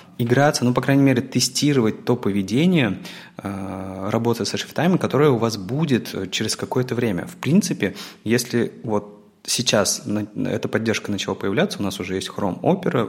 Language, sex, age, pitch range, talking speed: Russian, male, 20-39, 95-125 Hz, 160 wpm